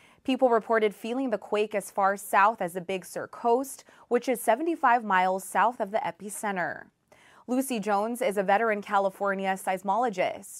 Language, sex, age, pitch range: English, female, 20-39, 190-225 Hz